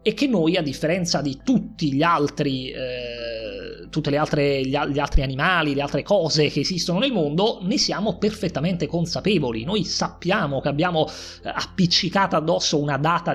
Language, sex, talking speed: Italian, male, 160 wpm